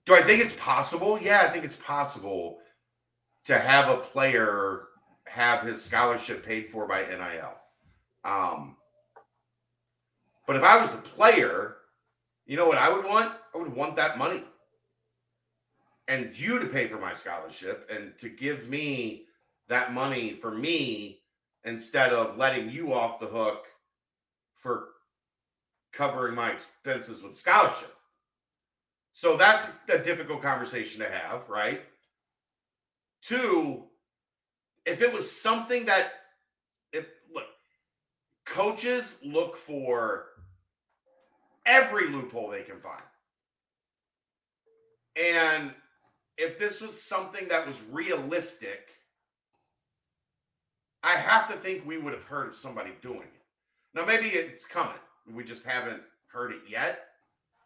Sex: male